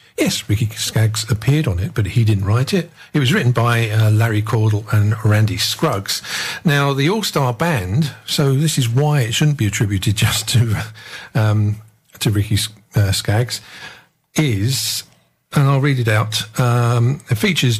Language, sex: English, male